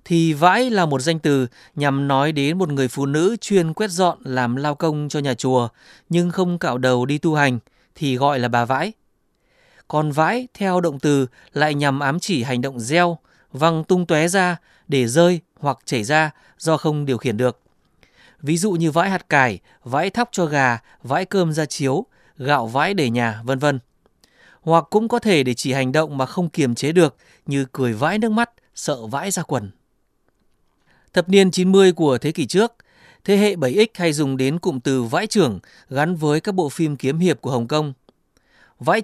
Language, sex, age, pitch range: Vietnamese, male, 20-39, 135-180 Hz